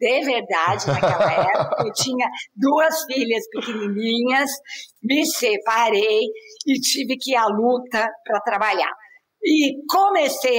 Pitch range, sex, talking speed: 215-275 Hz, female, 120 wpm